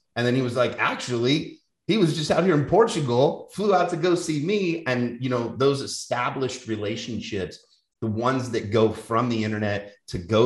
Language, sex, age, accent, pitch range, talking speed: English, male, 30-49, American, 95-125 Hz, 195 wpm